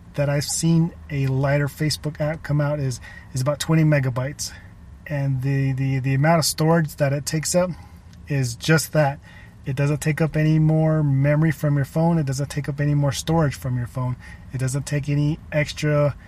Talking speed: 195 wpm